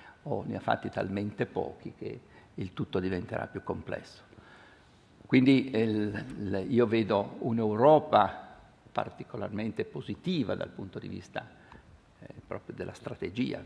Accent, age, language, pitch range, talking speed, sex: native, 60-79, Italian, 100-120 Hz, 115 wpm, male